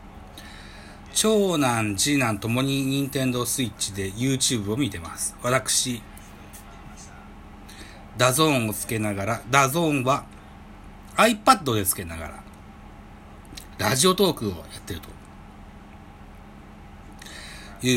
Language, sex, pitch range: Japanese, male, 100-125 Hz